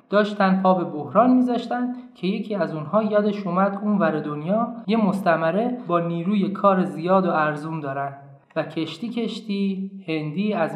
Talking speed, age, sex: 150 wpm, 20-39, male